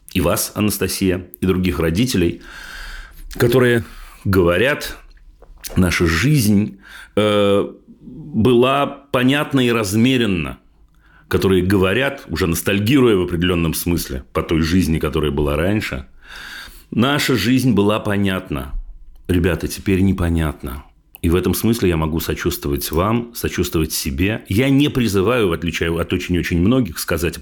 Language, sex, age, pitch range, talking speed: Russian, male, 40-59, 85-115 Hz, 120 wpm